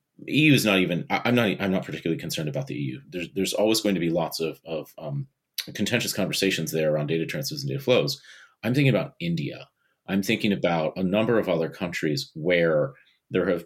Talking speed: 205 wpm